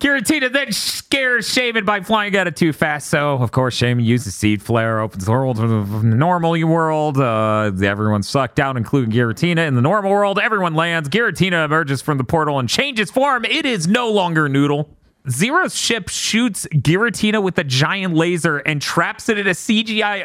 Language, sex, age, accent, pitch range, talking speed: English, male, 30-49, American, 145-205 Hz, 185 wpm